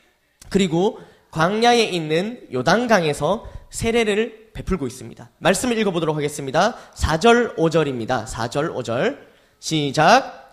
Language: Korean